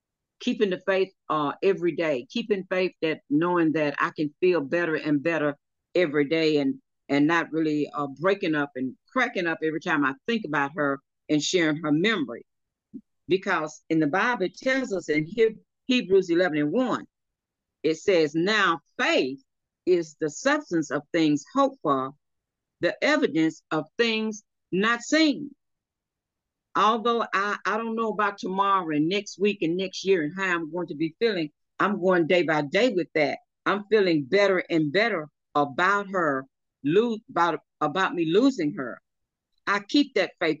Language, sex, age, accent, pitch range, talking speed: English, female, 50-69, American, 155-215 Hz, 165 wpm